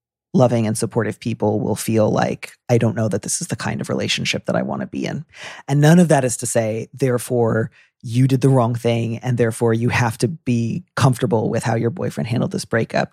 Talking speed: 230 wpm